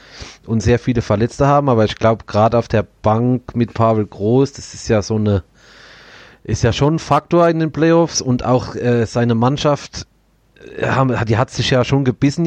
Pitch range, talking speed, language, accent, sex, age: 110-130 Hz, 195 wpm, German, German, male, 30-49